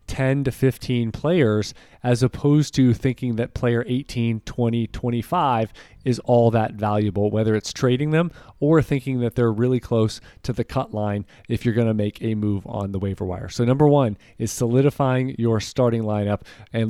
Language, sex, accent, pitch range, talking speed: English, male, American, 110-135 Hz, 180 wpm